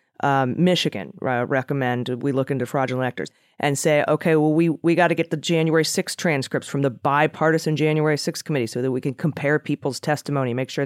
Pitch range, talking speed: 135-170 Hz, 205 wpm